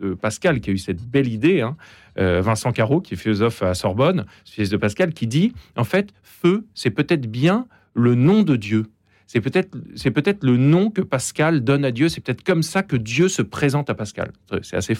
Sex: male